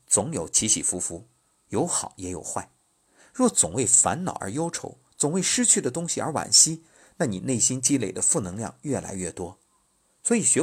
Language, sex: Chinese, male